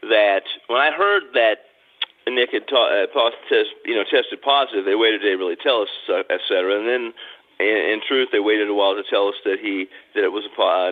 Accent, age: American, 40-59